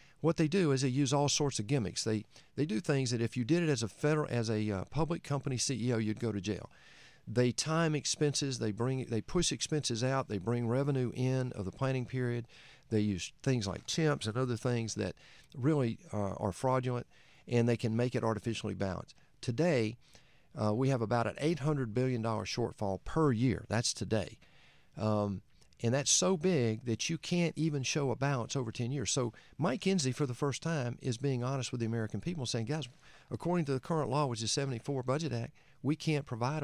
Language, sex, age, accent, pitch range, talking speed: English, male, 50-69, American, 115-145 Hz, 210 wpm